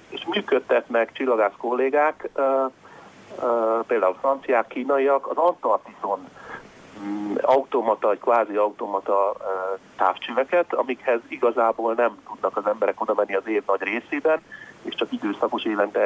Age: 40-59